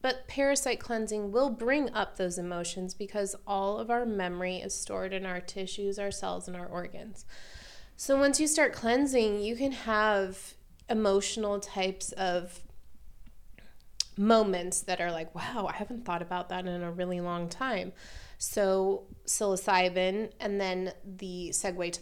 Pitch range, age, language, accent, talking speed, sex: 180-215 Hz, 20-39, English, American, 155 wpm, female